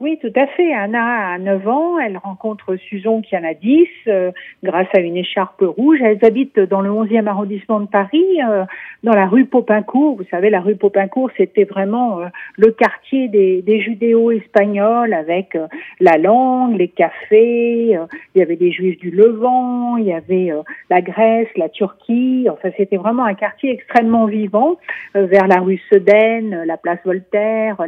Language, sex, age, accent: French, female, 50-69, French